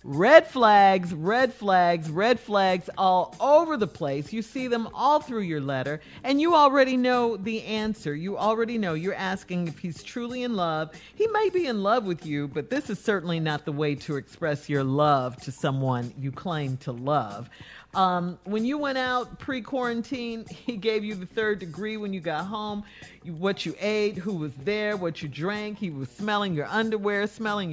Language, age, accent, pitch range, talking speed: English, 50-69, American, 175-230 Hz, 190 wpm